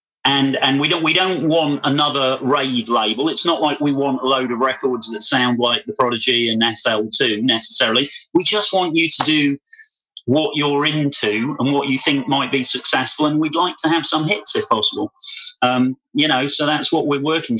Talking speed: 205 wpm